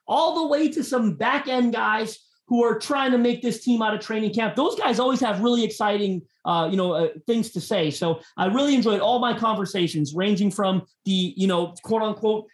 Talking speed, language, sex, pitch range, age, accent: 220 wpm, English, male, 190-230 Hz, 30-49, American